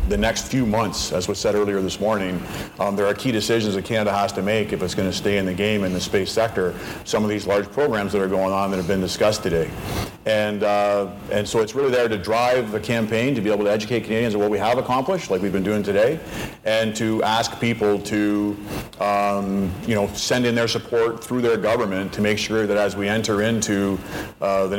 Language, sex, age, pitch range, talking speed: English, male, 40-59, 100-115 Hz, 235 wpm